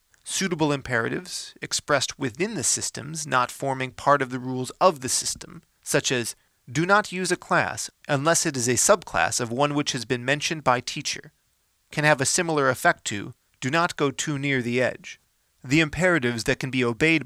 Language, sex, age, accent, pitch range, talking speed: English, male, 30-49, American, 125-155 Hz, 190 wpm